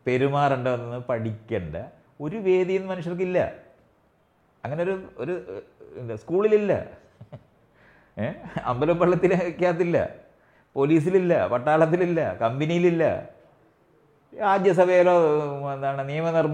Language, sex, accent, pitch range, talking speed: English, male, Indian, 125-175 Hz, 110 wpm